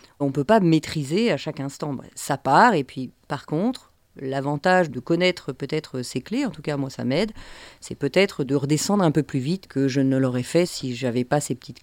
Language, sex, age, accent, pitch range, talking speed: French, female, 40-59, French, 145-220 Hz, 225 wpm